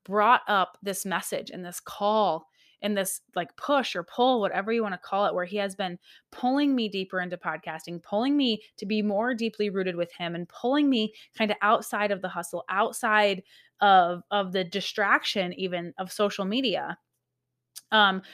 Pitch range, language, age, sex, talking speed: 185-220 Hz, English, 20-39, female, 185 wpm